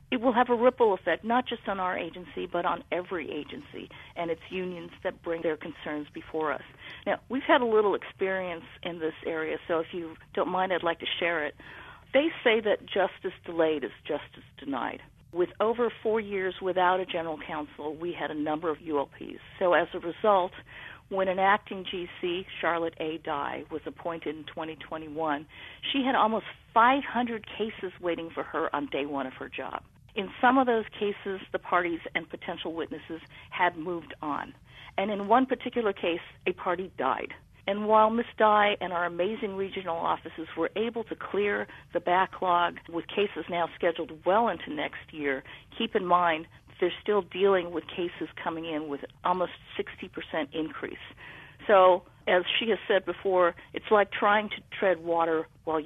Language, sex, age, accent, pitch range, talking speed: English, female, 50-69, American, 160-200 Hz, 180 wpm